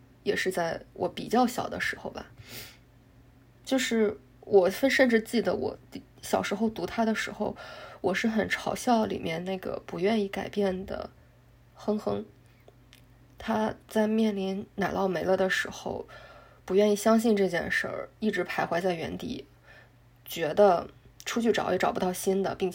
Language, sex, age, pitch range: Chinese, female, 20-39, 170-210 Hz